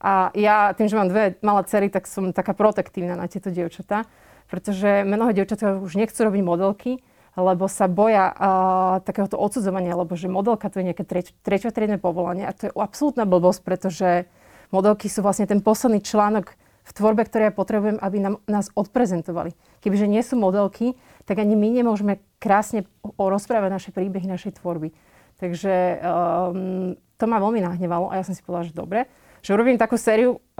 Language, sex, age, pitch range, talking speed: Slovak, female, 30-49, 180-210 Hz, 175 wpm